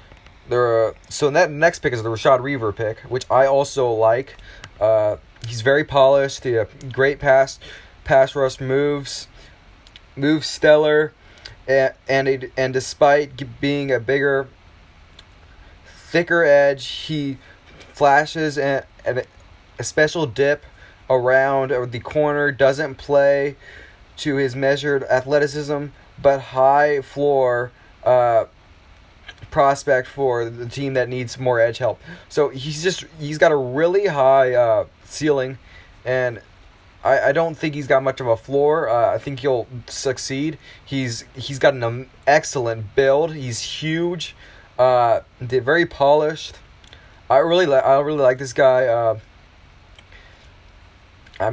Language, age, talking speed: English, 20-39, 130 wpm